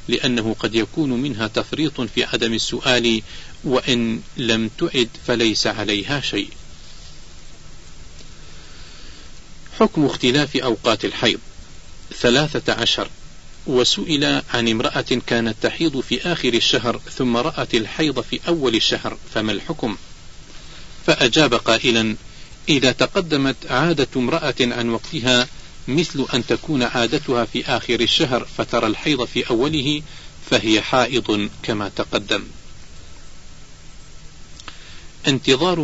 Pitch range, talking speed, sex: 110-140 Hz, 100 wpm, male